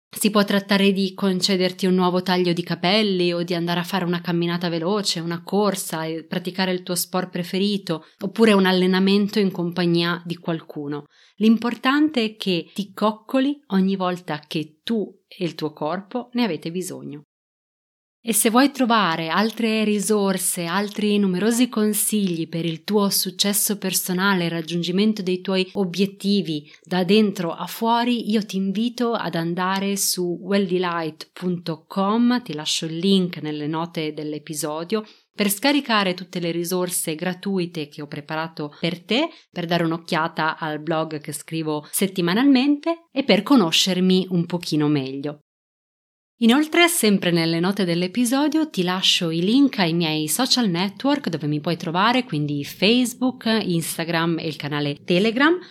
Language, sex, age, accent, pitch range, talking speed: Italian, female, 30-49, native, 165-215 Hz, 145 wpm